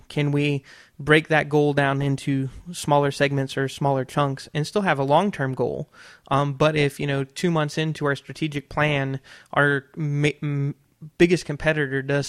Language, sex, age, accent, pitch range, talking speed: English, male, 20-39, American, 135-150 Hz, 170 wpm